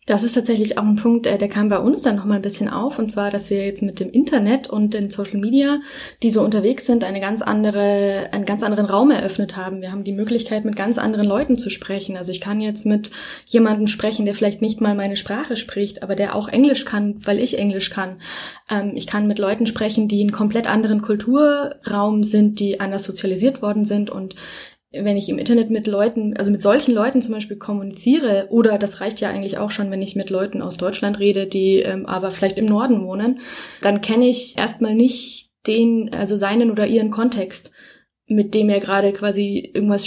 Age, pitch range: 10-29, 200-230 Hz